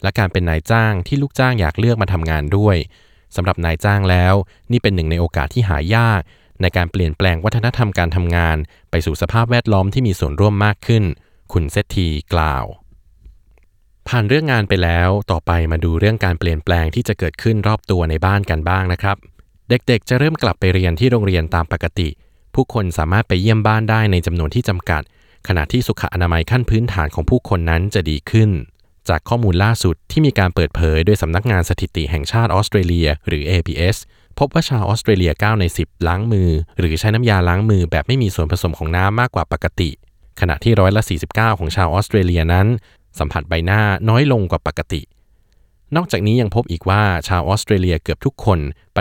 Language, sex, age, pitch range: Thai, male, 20-39, 85-110 Hz